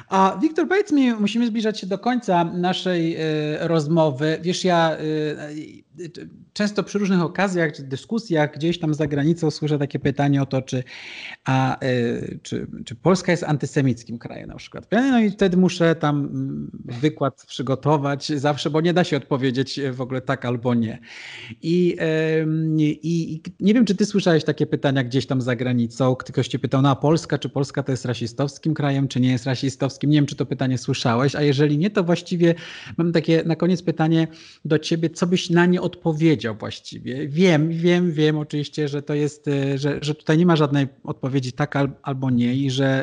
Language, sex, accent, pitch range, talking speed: Polish, male, native, 140-170 Hz, 180 wpm